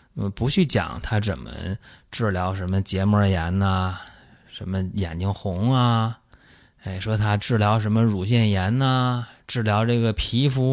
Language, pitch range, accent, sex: Chinese, 95-130 Hz, native, male